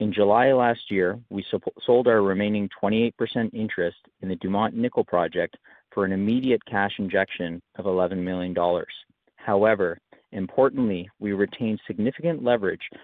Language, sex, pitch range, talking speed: English, male, 95-110 Hz, 135 wpm